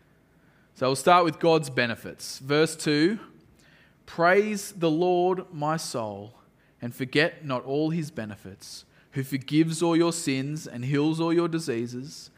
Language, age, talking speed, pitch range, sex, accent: English, 20-39, 140 wpm, 135-175 Hz, male, Australian